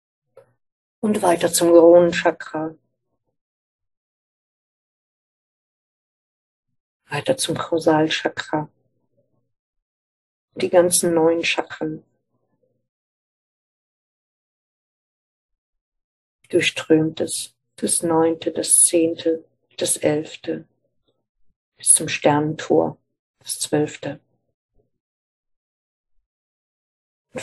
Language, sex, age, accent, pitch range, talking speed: German, female, 60-79, German, 150-180 Hz, 55 wpm